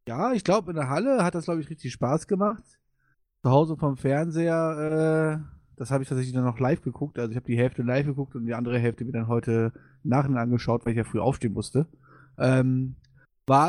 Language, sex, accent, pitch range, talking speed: German, male, German, 125-150 Hz, 220 wpm